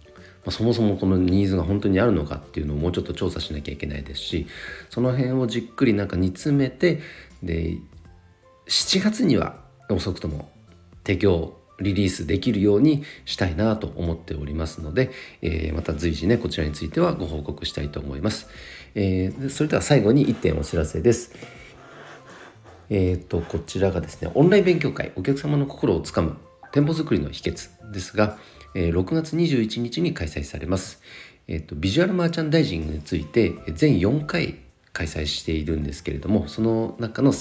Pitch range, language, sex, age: 80-120 Hz, Japanese, male, 40-59